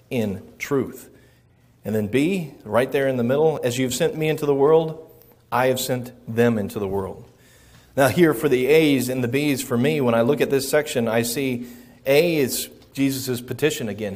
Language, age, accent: English, 40-59, American